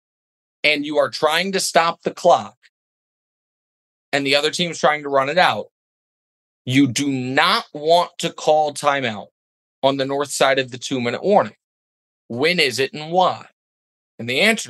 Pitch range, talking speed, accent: 135-200 Hz, 165 wpm, American